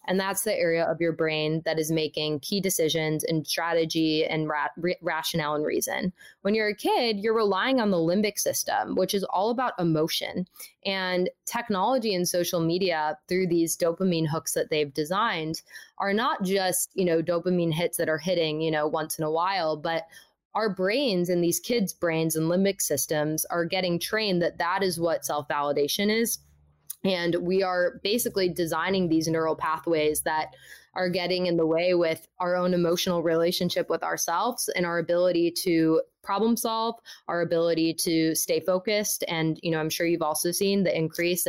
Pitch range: 160-190 Hz